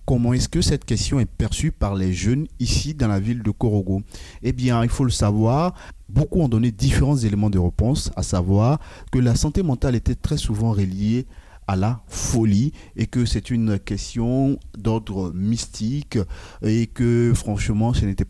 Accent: French